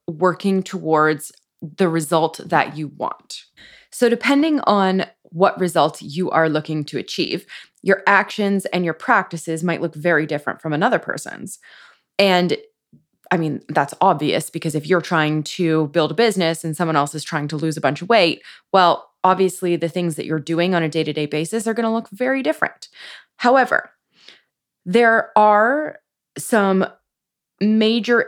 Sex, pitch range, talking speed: female, 160-210 Hz, 160 wpm